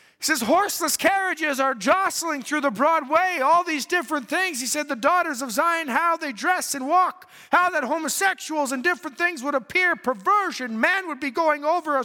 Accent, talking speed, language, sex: American, 195 wpm, English, male